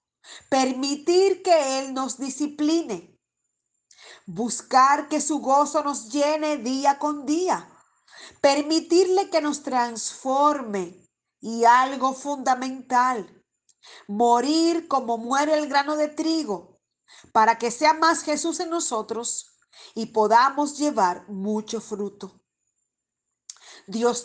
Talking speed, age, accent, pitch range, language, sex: 100 wpm, 40-59, American, 215-310 Hz, Spanish, female